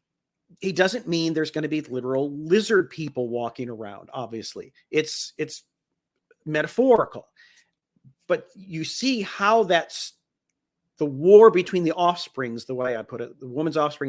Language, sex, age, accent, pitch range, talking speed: English, male, 40-59, American, 135-190 Hz, 145 wpm